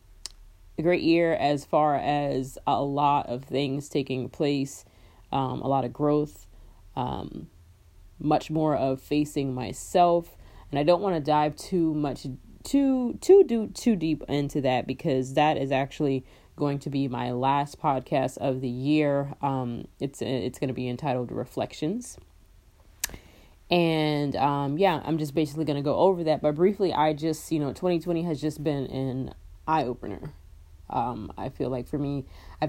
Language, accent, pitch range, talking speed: English, American, 125-150 Hz, 165 wpm